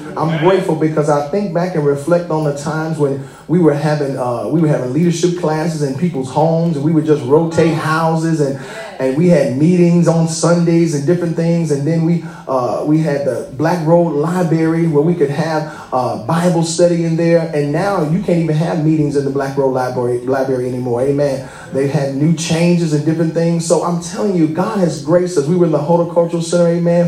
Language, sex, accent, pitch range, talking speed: English, male, American, 145-170 Hz, 215 wpm